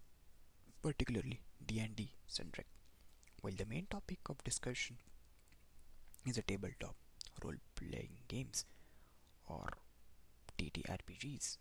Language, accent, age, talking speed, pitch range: English, Indian, 20-39, 90 wpm, 75-130 Hz